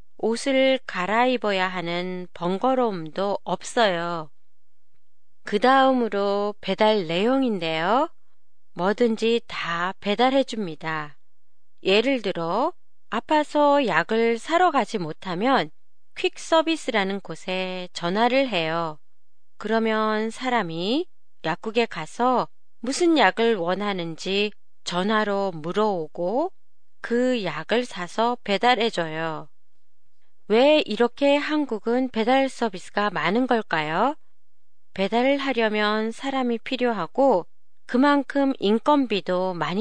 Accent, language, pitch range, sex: Korean, Japanese, 180-250 Hz, female